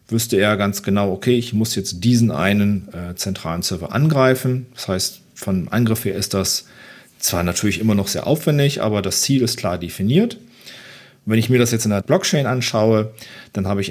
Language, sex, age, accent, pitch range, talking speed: German, male, 40-59, German, 100-130 Hz, 195 wpm